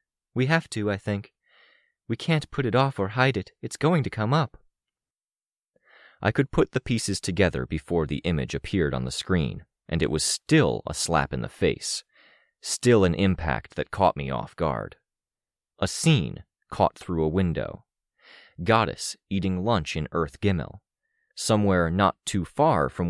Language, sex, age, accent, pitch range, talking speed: English, male, 30-49, American, 80-115 Hz, 170 wpm